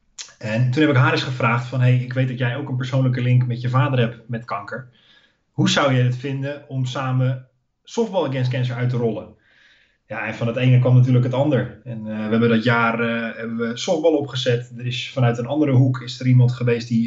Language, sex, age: Dutch, male, 20-39